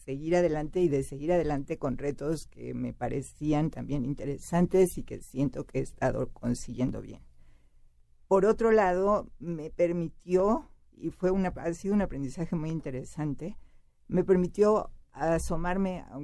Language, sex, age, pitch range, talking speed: Spanish, female, 50-69, 135-180 Hz, 140 wpm